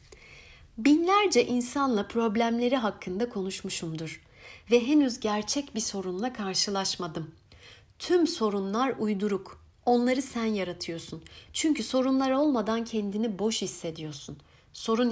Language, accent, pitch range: Turkish, native, 180-240 Hz